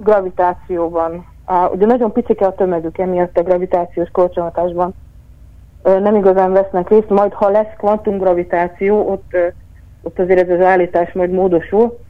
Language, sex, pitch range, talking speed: Hungarian, female, 180-210 Hz, 140 wpm